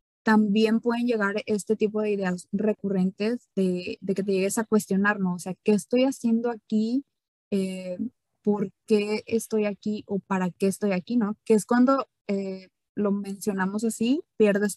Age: 20-39